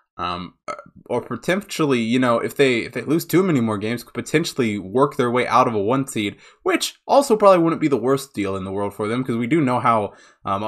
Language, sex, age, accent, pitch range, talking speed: English, male, 20-39, American, 100-135 Hz, 240 wpm